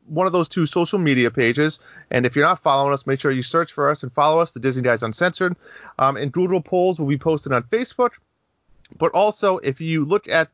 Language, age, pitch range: English, 30-49, 120-155 Hz